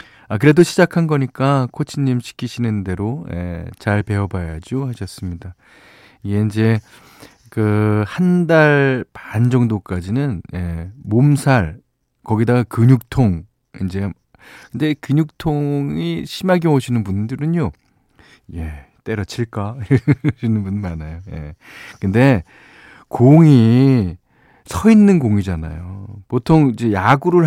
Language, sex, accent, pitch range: Korean, male, native, 100-140 Hz